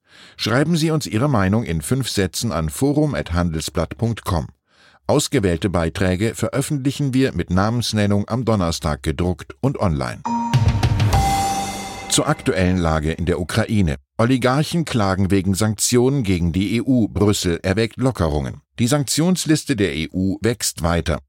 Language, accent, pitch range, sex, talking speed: German, German, 85-120 Hz, male, 120 wpm